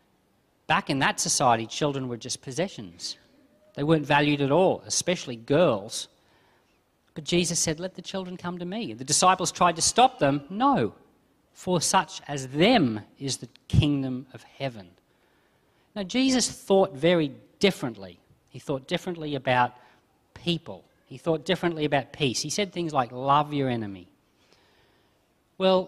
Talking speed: 145 wpm